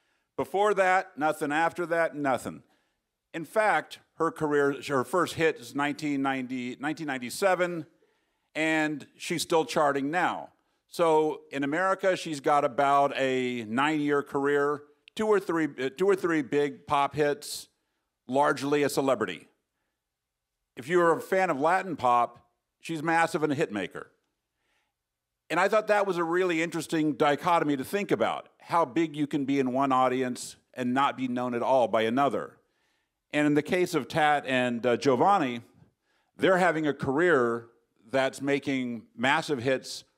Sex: male